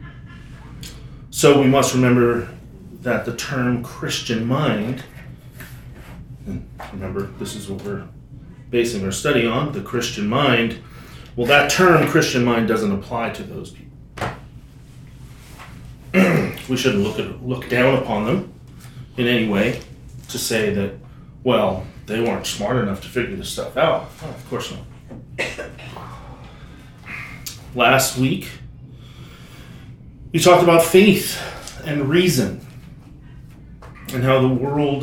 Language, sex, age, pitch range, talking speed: English, male, 30-49, 120-140 Hz, 120 wpm